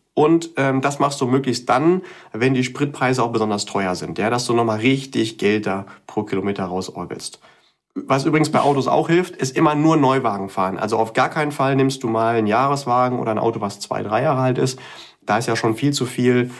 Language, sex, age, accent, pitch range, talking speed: German, male, 30-49, German, 110-140 Hz, 215 wpm